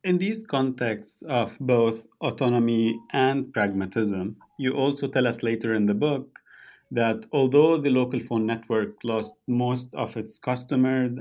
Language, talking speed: English, 145 wpm